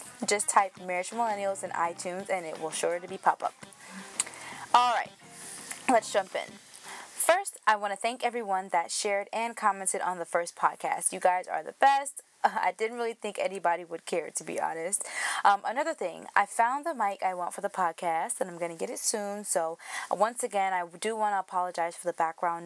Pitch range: 175-220 Hz